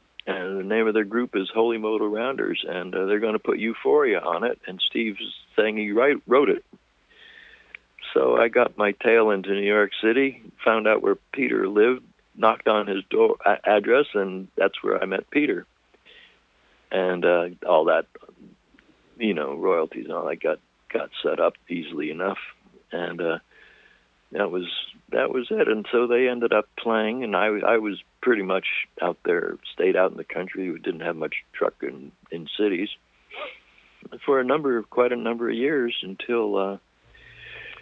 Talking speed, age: 180 wpm, 60-79